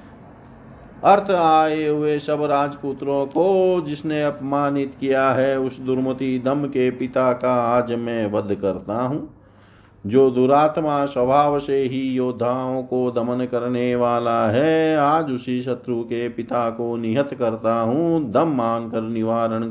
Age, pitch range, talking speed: 40-59, 110-135 Hz, 135 wpm